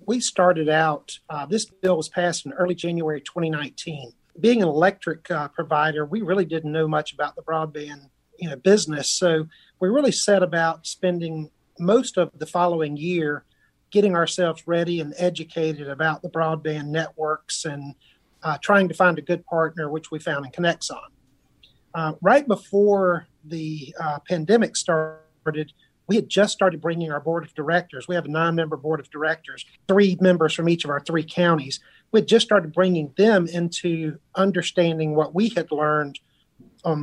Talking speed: 165 wpm